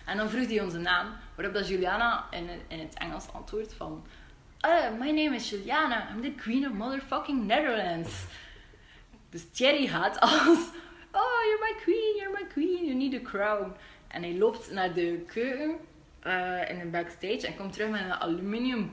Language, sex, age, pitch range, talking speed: Dutch, female, 20-39, 195-310 Hz, 180 wpm